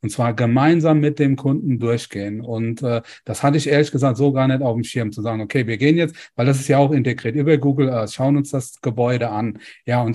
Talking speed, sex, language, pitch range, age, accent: 250 wpm, male, German, 120-150 Hz, 40-59, German